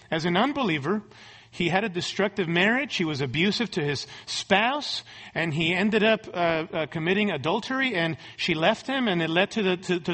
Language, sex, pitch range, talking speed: English, male, 160-225 Hz, 195 wpm